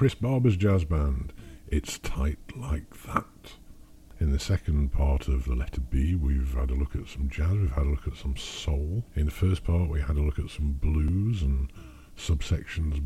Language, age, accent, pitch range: English, 50-69, British, 70-85 Hz